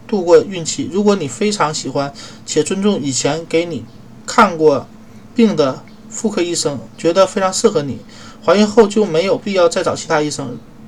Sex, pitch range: male, 155-220 Hz